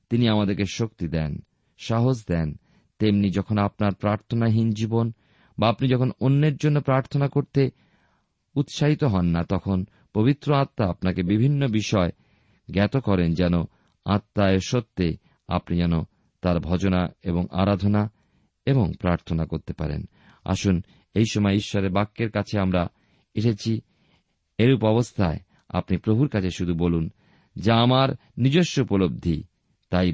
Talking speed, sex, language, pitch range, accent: 120 wpm, male, Bengali, 90-125 Hz, native